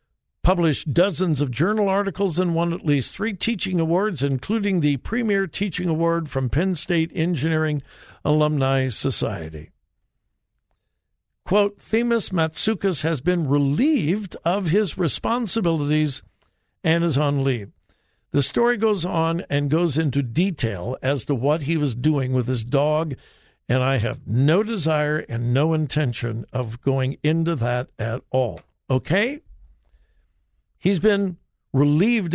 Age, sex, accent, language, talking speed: 60-79, male, American, English, 130 wpm